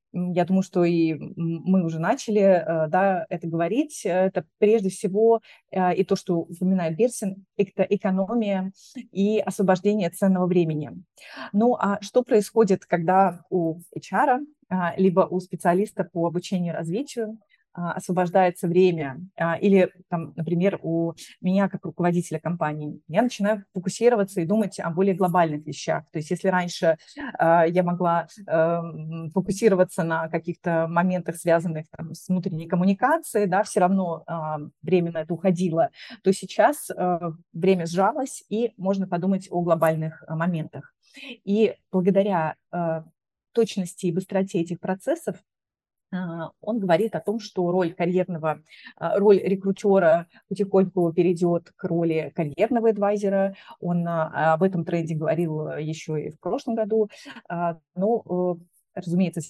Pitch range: 170-200 Hz